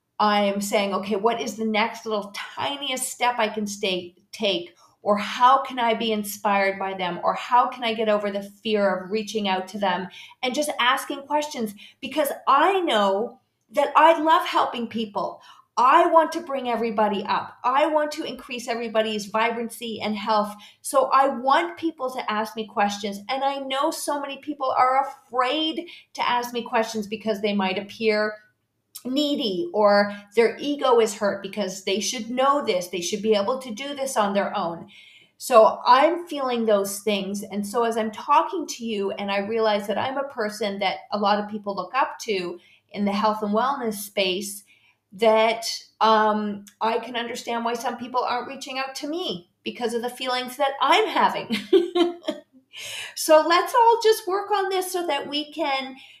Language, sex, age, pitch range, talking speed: English, female, 40-59, 205-270 Hz, 180 wpm